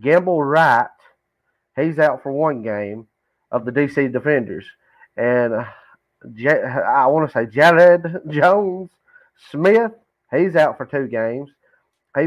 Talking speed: 130 wpm